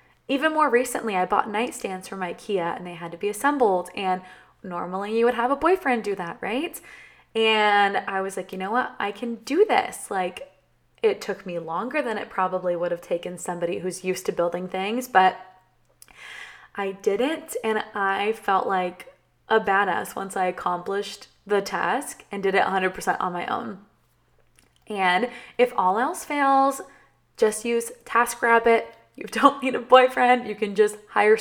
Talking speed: 170 wpm